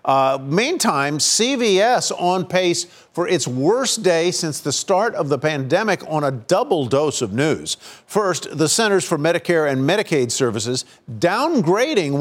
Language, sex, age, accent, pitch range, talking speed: English, male, 50-69, American, 145-185 Hz, 150 wpm